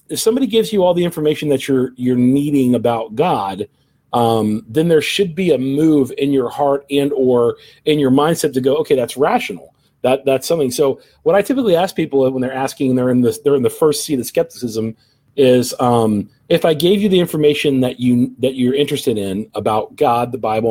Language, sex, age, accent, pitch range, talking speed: English, male, 40-59, American, 125-160 Hz, 210 wpm